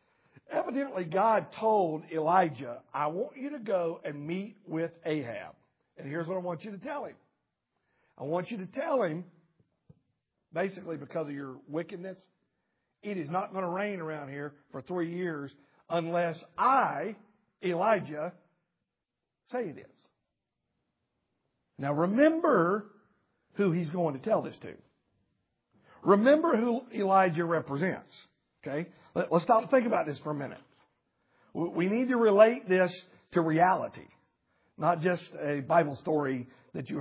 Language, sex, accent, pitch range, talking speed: English, male, American, 150-200 Hz, 140 wpm